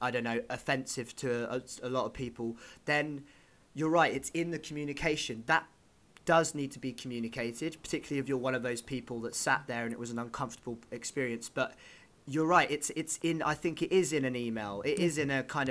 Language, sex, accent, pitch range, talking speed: English, male, British, 125-150 Hz, 215 wpm